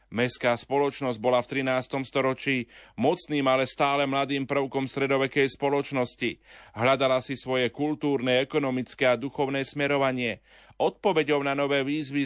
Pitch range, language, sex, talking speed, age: 120-140 Hz, Slovak, male, 120 wpm, 30-49